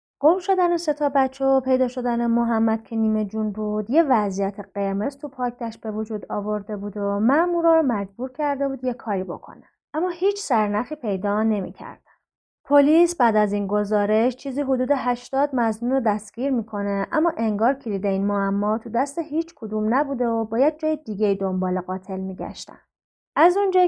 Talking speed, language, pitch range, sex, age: 170 wpm, Persian, 210-295 Hz, female, 30-49